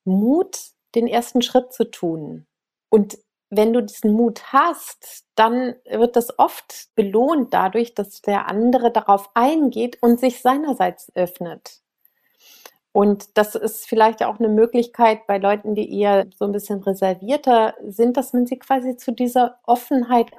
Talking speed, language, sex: 145 wpm, German, female